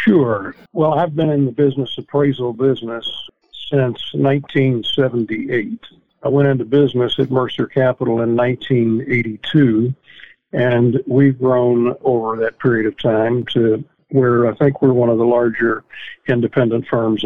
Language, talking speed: English, 135 wpm